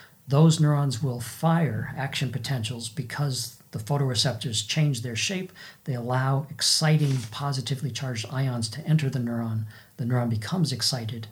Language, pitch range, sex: English, 120-145 Hz, male